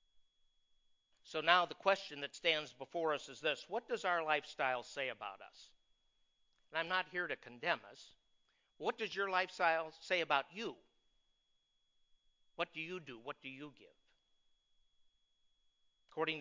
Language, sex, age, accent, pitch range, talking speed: English, male, 50-69, American, 125-160 Hz, 145 wpm